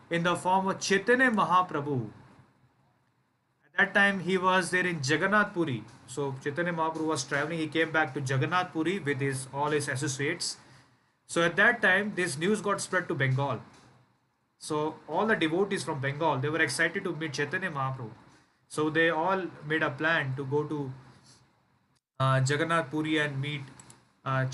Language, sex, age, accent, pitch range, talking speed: English, male, 30-49, Indian, 130-165 Hz, 170 wpm